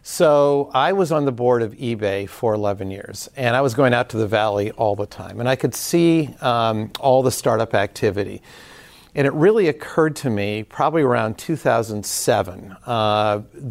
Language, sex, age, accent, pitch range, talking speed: English, male, 50-69, American, 110-140 Hz, 180 wpm